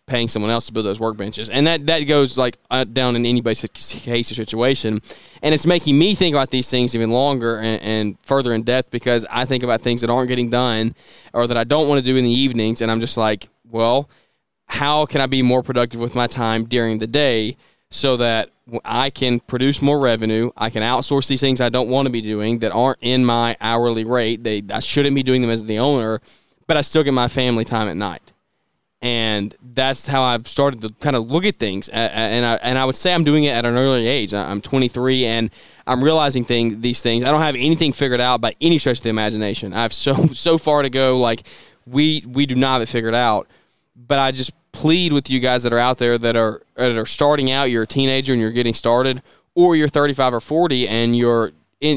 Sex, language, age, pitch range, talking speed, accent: male, English, 20-39, 115-135 Hz, 235 wpm, American